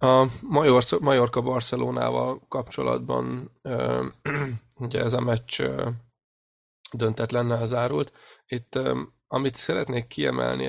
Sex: male